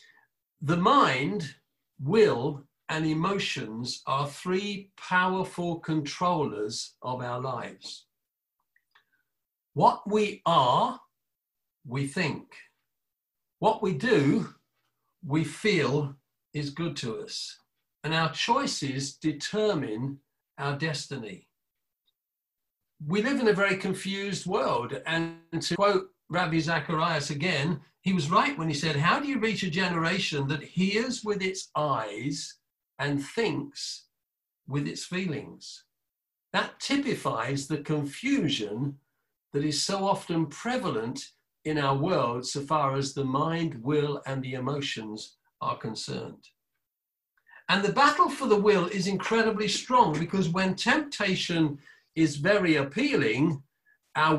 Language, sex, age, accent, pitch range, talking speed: English, male, 50-69, British, 140-195 Hz, 115 wpm